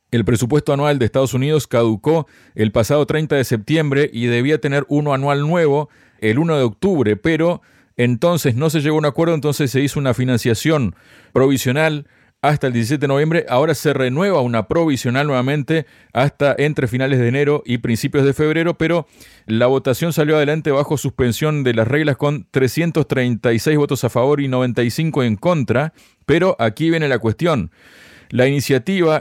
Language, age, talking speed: Spanish, 40-59, 170 wpm